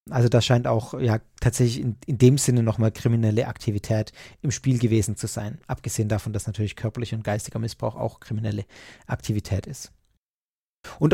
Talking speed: 165 wpm